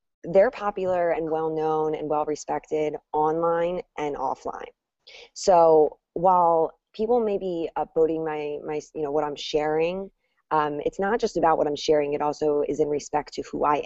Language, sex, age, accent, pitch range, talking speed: English, female, 20-39, American, 150-190 Hz, 175 wpm